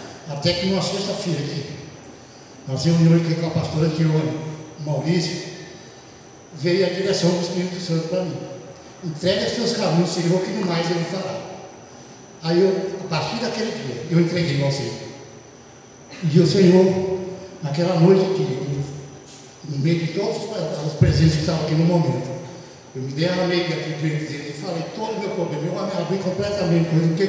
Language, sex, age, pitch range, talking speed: Portuguese, male, 60-79, 160-195 Hz, 170 wpm